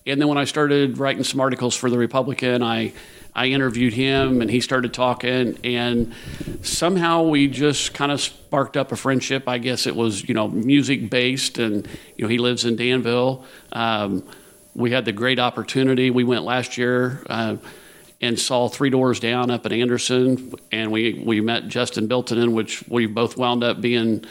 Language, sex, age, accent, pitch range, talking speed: English, male, 50-69, American, 115-130 Hz, 185 wpm